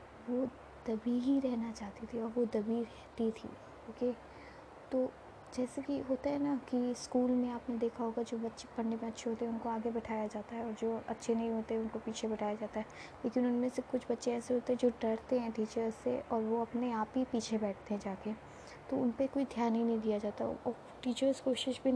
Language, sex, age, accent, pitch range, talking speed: Hindi, female, 20-39, native, 225-250 Hz, 220 wpm